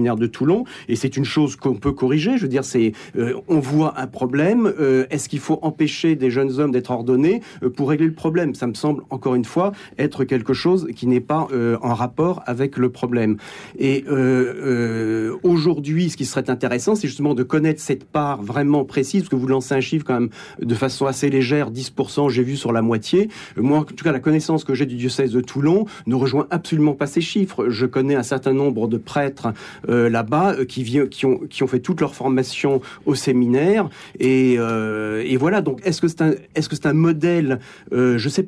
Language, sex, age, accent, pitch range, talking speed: French, male, 40-59, French, 125-160 Hz, 225 wpm